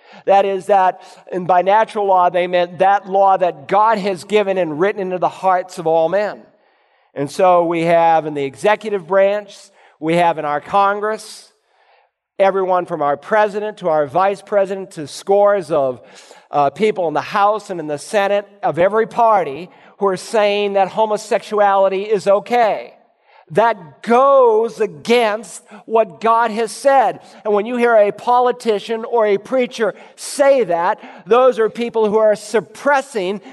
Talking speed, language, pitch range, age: 160 wpm, English, 185-230 Hz, 50-69